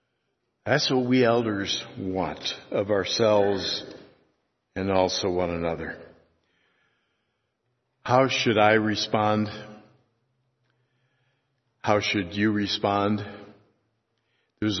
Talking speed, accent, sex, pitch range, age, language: 80 wpm, American, male, 100-130 Hz, 60-79, English